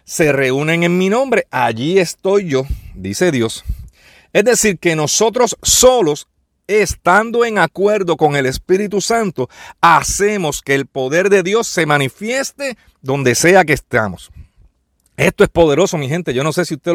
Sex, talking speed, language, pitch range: male, 155 wpm, Spanish, 140-195 Hz